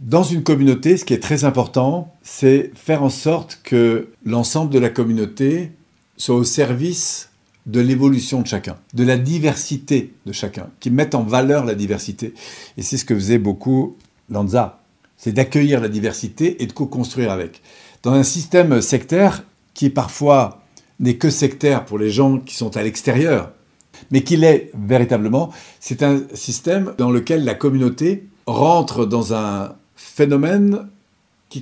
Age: 50-69